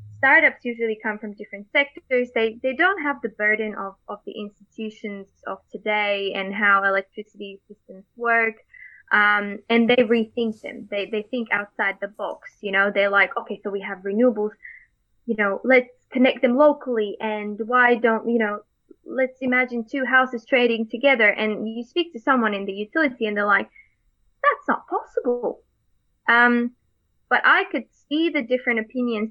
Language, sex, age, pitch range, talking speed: English, female, 10-29, 195-235 Hz, 170 wpm